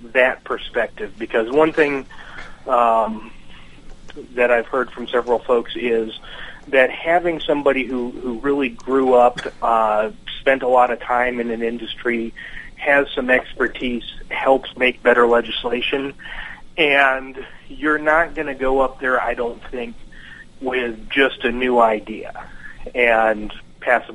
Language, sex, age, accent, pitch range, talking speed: English, male, 30-49, American, 115-130 Hz, 140 wpm